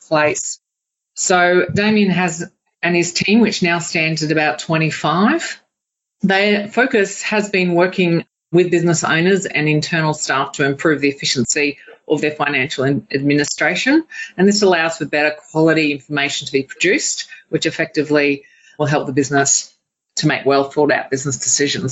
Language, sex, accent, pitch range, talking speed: English, female, Australian, 145-180 Hz, 150 wpm